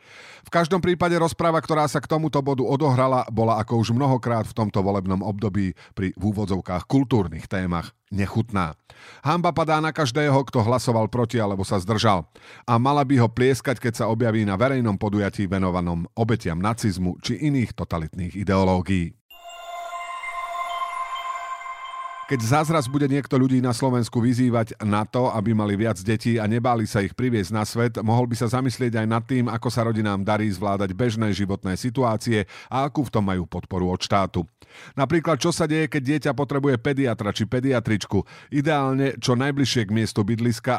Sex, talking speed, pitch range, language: male, 165 wpm, 105-135 Hz, Slovak